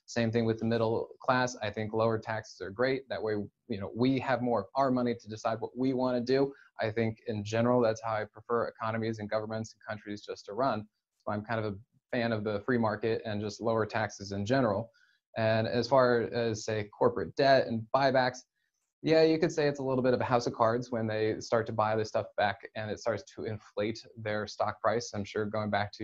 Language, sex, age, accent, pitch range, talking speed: English, male, 20-39, American, 110-125 Hz, 240 wpm